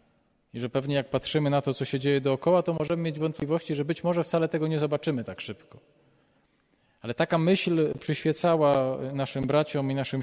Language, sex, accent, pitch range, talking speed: Polish, male, native, 140-165 Hz, 190 wpm